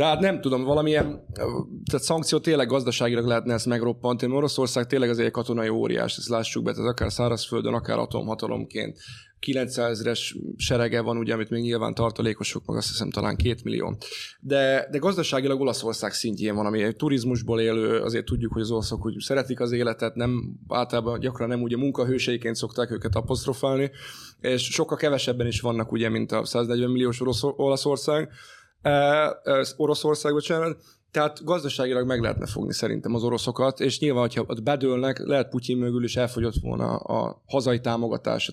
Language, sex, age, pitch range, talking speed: Hungarian, male, 20-39, 115-135 Hz, 160 wpm